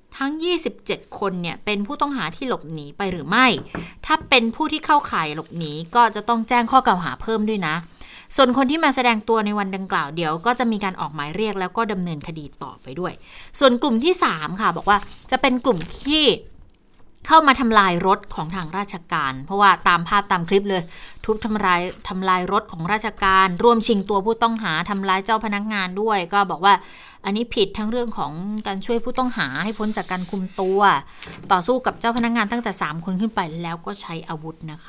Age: 30-49